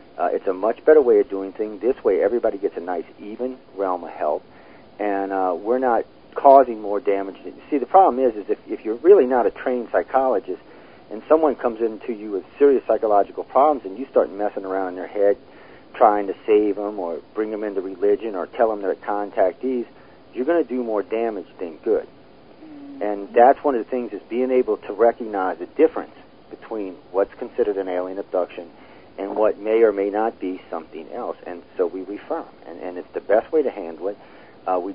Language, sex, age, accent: Japanese, male, 40-59, American